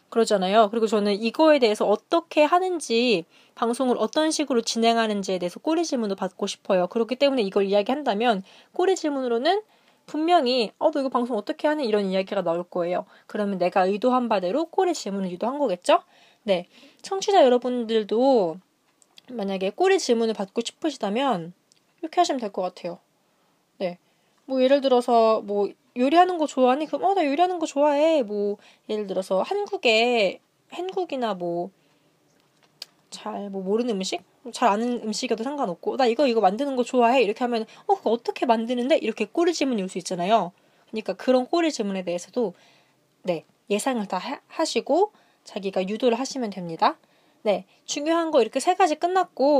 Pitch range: 200-290 Hz